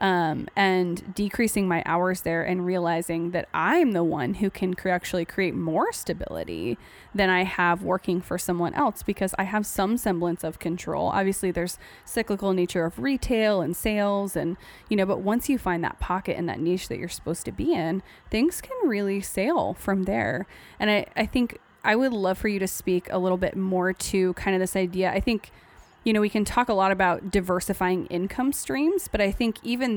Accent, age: American, 20-39